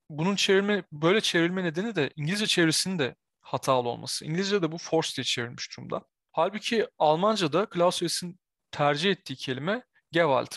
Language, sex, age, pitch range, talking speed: Turkish, male, 30-49, 135-175 Hz, 140 wpm